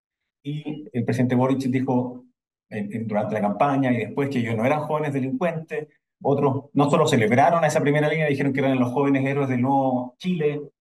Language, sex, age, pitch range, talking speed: Spanish, male, 30-49, 130-180 Hz, 190 wpm